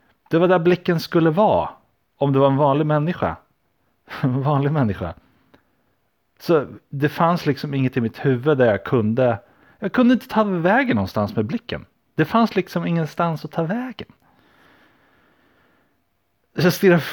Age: 30-49